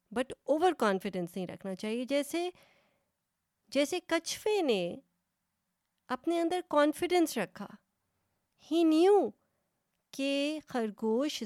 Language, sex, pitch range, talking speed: Urdu, female, 195-275 Hz, 95 wpm